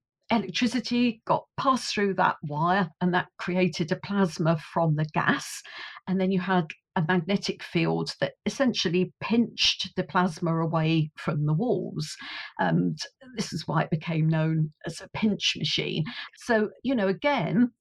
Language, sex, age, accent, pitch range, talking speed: English, female, 50-69, British, 165-200 Hz, 150 wpm